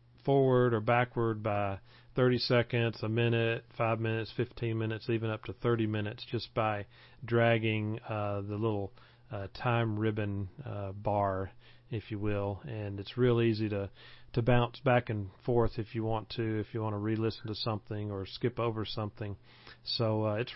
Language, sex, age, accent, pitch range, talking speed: English, male, 40-59, American, 105-120 Hz, 170 wpm